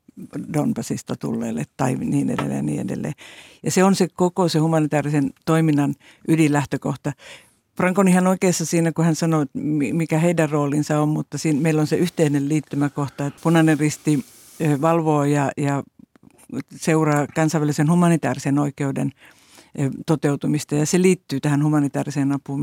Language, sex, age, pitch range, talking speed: Finnish, female, 60-79, 140-160 Hz, 135 wpm